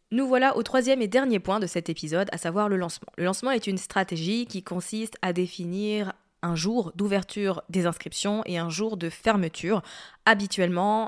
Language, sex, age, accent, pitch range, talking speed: French, female, 20-39, French, 190-230 Hz, 185 wpm